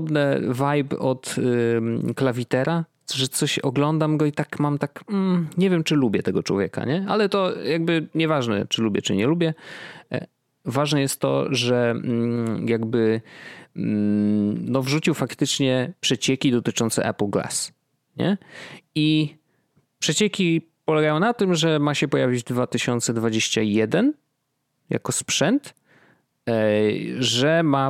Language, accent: Polish, native